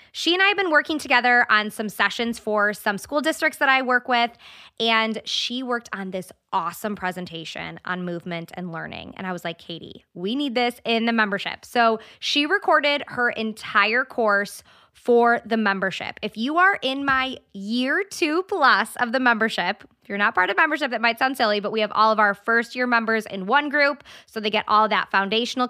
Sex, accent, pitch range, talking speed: female, American, 200-255 Hz, 205 wpm